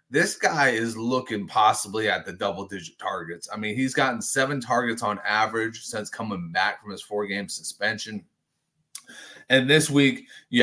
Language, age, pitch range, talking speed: English, 30-49, 95-115 Hz, 160 wpm